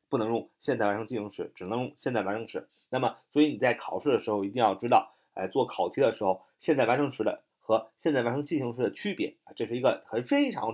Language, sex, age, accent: Chinese, male, 30-49, native